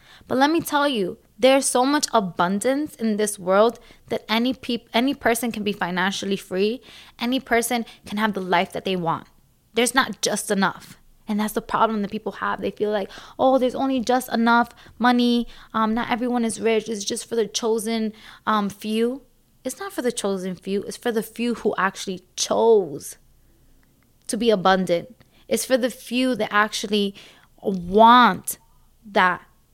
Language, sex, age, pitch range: English, female, 20-39, 200-255 Hz